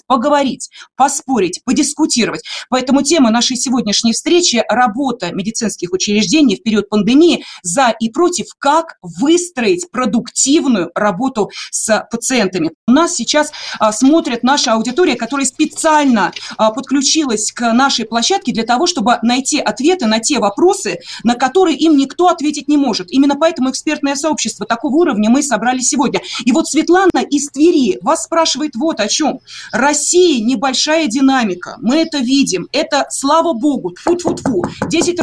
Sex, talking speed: female, 140 wpm